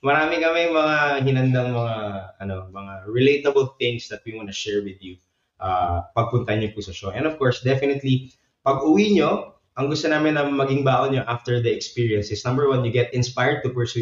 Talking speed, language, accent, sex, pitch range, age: 180 wpm, Filipino, native, male, 105-135 Hz, 20-39